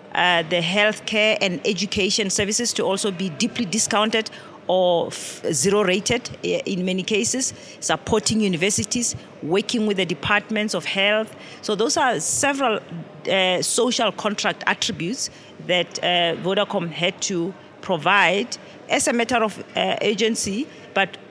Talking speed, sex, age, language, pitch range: 130 wpm, female, 40-59, English, 180-220 Hz